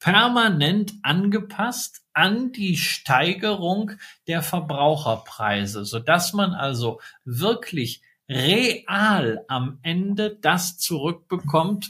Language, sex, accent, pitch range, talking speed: German, male, German, 140-190 Hz, 85 wpm